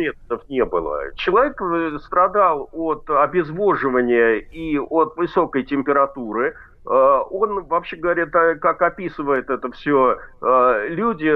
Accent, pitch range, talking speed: native, 150-230 Hz, 95 wpm